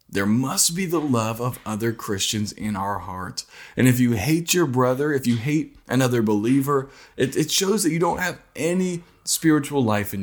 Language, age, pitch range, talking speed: English, 20-39, 105-140 Hz, 195 wpm